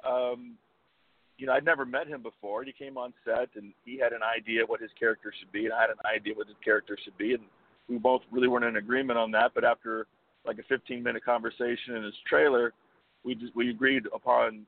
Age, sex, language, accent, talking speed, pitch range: 40-59, male, English, American, 230 wpm, 115-140 Hz